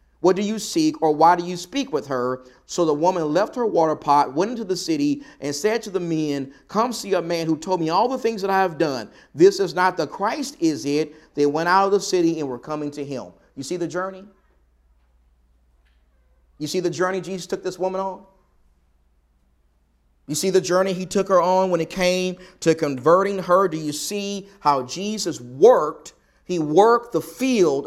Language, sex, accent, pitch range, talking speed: English, male, American, 135-215 Hz, 205 wpm